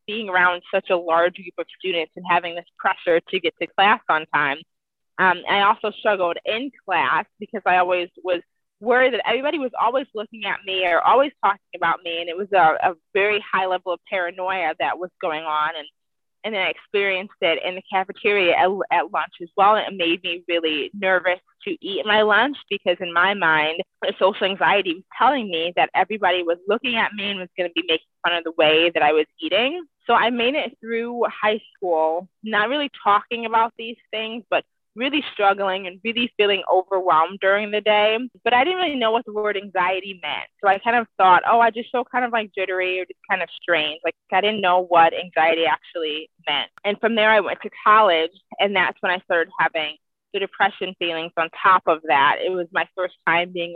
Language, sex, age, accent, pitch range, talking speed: English, female, 20-39, American, 175-220 Hz, 215 wpm